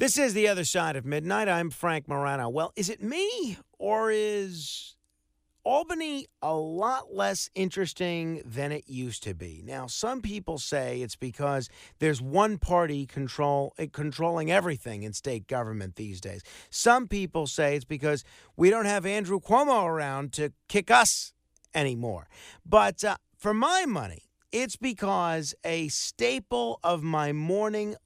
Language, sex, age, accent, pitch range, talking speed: English, male, 50-69, American, 135-195 Hz, 150 wpm